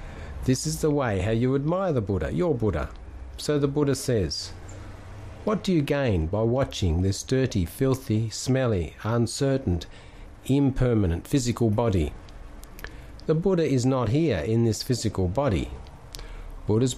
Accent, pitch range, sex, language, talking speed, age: Australian, 95-130 Hz, male, English, 140 wpm, 50-69